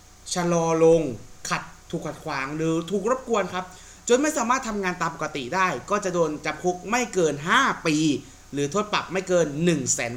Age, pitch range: 30-49, 160-220 Hz